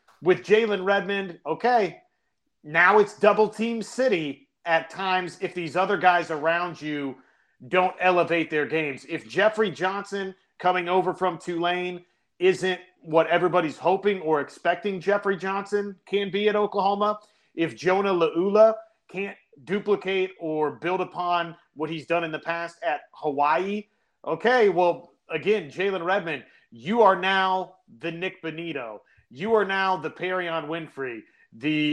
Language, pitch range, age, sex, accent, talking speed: English, 155-195 Hz, 30-49, male, American, 140 wpm